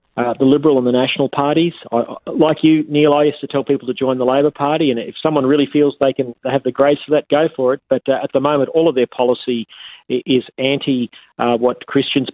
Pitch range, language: 120-140 Hz, English